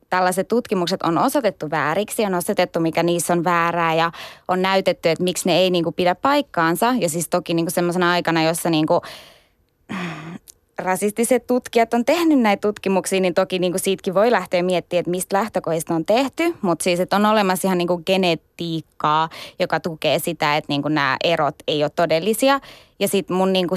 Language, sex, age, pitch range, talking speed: Finnish, female, 20-39, 170-200 Hz, 185 wpm